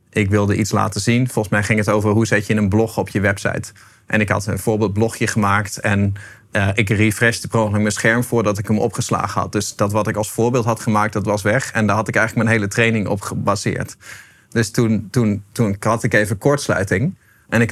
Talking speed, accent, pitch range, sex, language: 220 wpm, Dutch, 105-120 Hz, male, Dutch